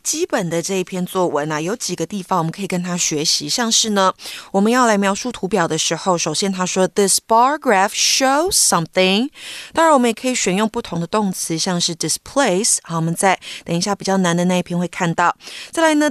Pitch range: 175-250 Hz